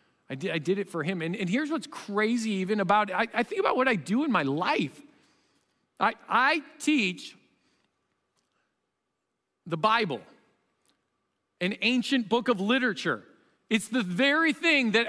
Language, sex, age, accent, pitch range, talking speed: English, male, 40-59, American, 195-255 Hz, 150 wpm